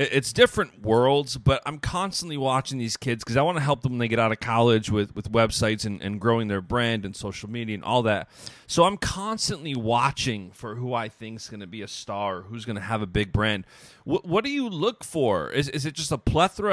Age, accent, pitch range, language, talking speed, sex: 30-49, American, 115-150 Hz, English, 245 wpm, male